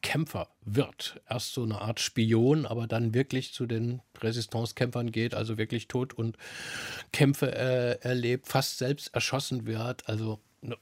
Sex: male